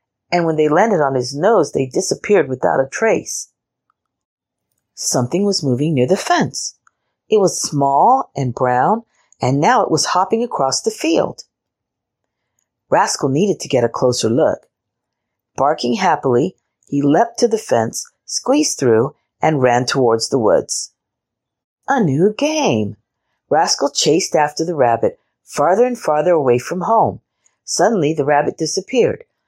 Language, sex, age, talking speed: English, female, 50-69, 145 wpm